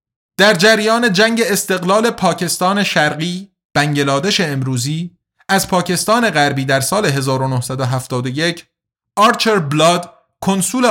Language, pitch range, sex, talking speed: Persian, 140-195 Hz, male, 95 wpm